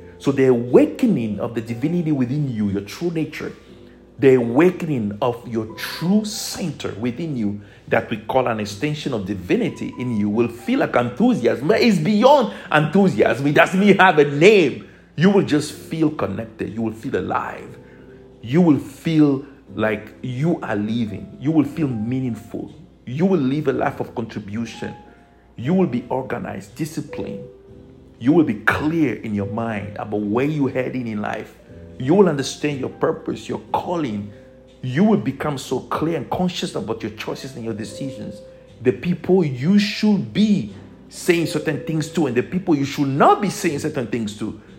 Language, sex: English, male